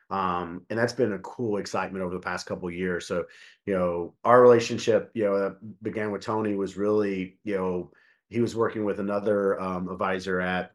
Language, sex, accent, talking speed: English, male, American, 200 wpm